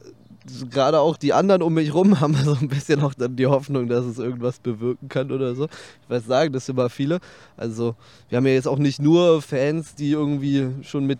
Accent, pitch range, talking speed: German, 120-140 Hz, 225 wpm